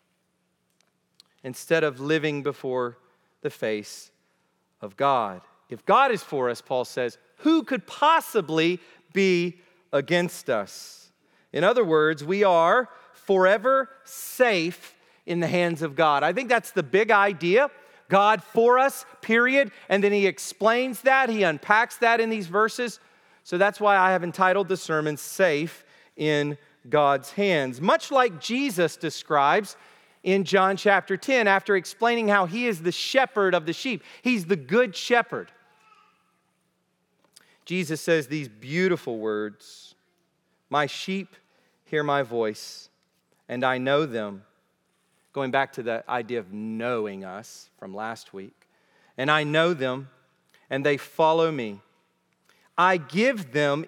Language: English